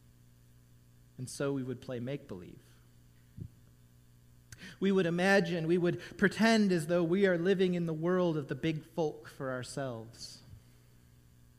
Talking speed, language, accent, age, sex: 135 wpm, English, American, 40-59, male